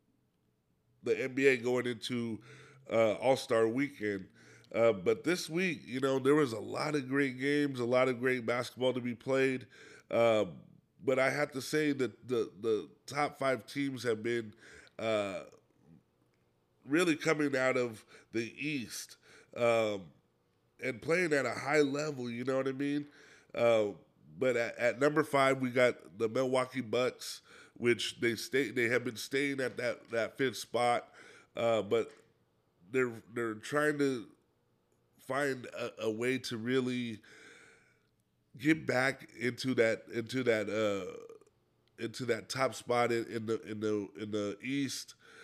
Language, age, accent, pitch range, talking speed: English, 20-39, American, 115-135 Hz, 150 wpm